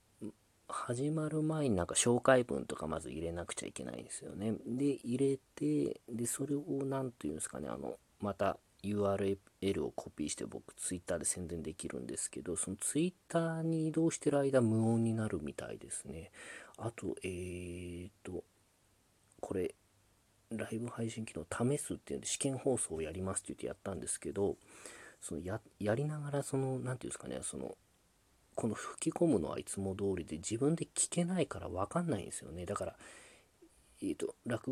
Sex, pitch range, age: male, 95-140 Hz, 40-59